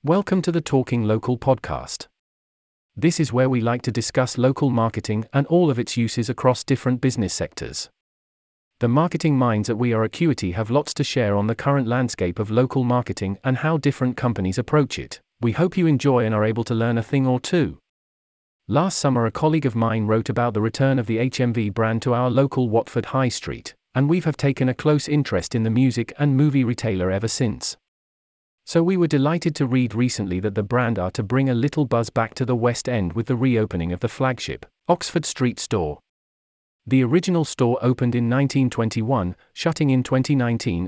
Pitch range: 110-135 Hz